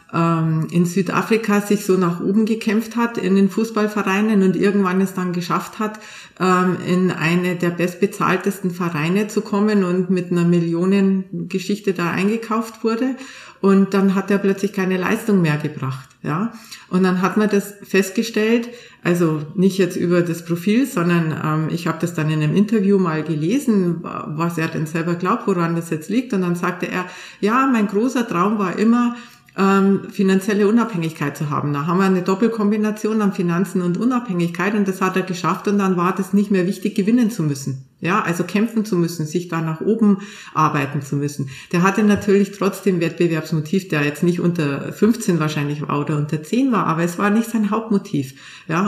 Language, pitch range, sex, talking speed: German, 170-210 Hz, female, 180 wpm